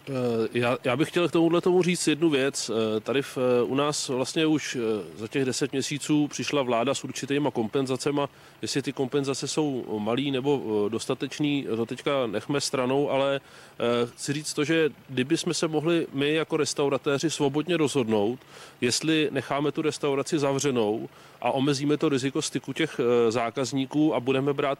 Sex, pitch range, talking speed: male, 125-150 Hz, 150 wpm